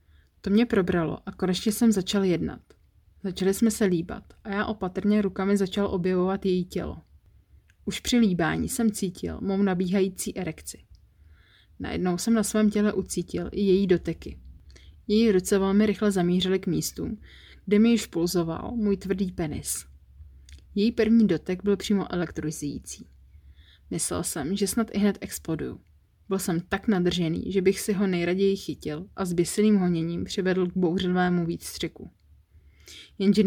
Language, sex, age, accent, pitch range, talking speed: Czech, female, 30-49, native, 160-200 Hz, 150 wpm